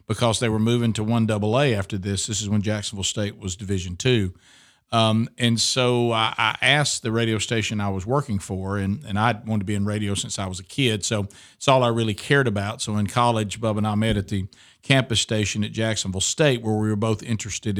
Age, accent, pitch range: 50-69, American, 105-120 Hz